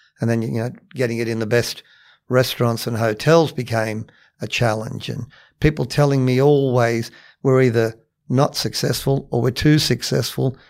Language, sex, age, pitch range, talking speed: English, male, 50-69, 115-140 Hz, 155 wpm